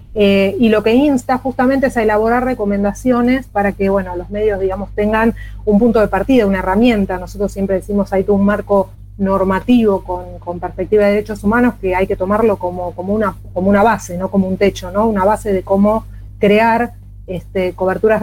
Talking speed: 195 wpm